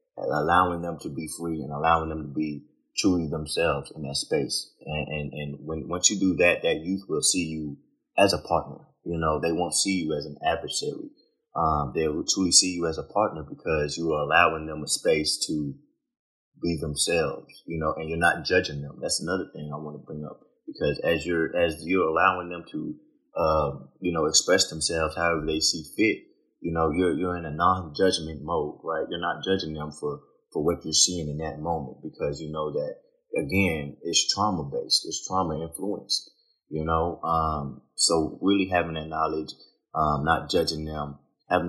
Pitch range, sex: 75-90 Hz, male